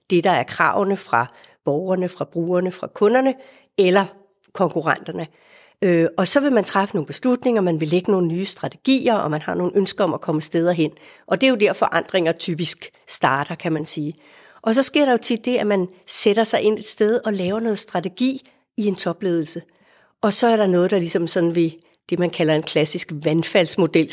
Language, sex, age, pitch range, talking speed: Danish, female, 60-79, 170-215 Hz, 205 wpm